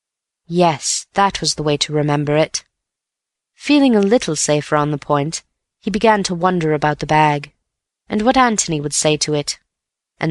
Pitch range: 150-200 Hz